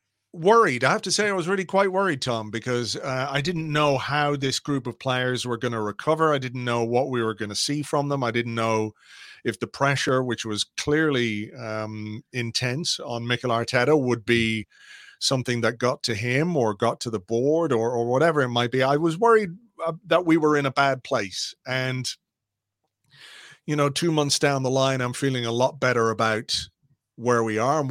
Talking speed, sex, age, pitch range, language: 210 wpm, male, 40-59, 115-145 Hz, English